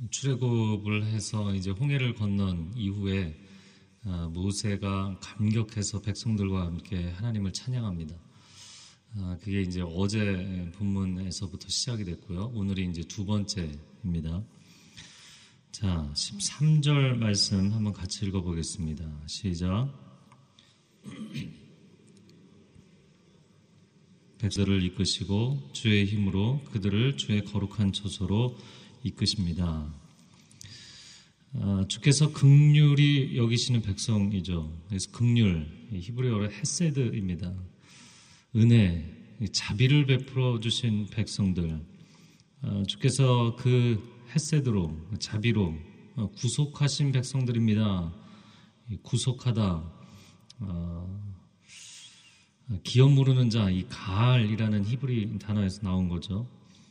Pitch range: 95-125 Hz